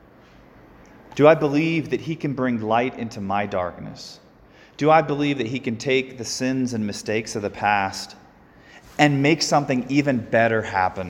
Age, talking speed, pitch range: 30-49, 170 wpm, 105-140 Hz